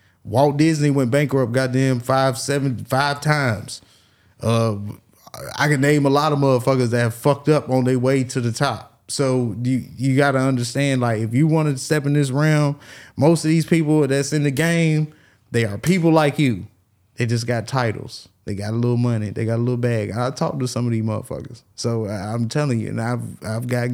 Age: 20-39